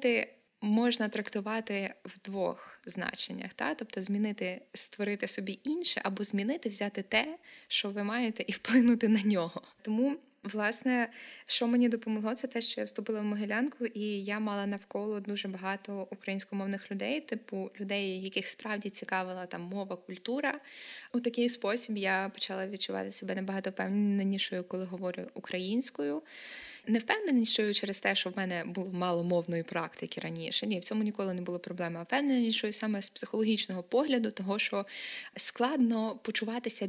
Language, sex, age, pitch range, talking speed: Ukrainian, female, 20-39, 185-225 Hz, 150 wpm